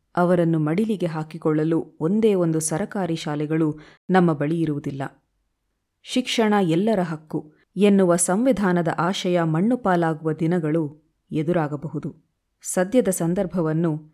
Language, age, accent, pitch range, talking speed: Kannada, 20-39, native, 155-195 Hz, 95 wpm